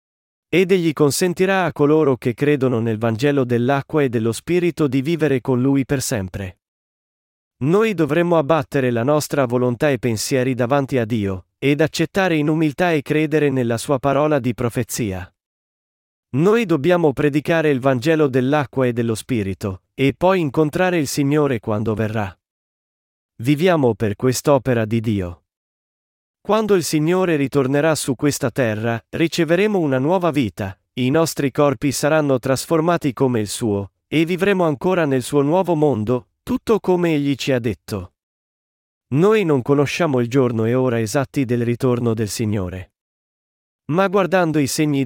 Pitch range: 115-155 Hz